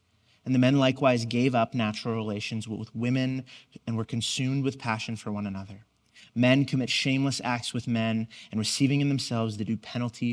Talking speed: 180 wpm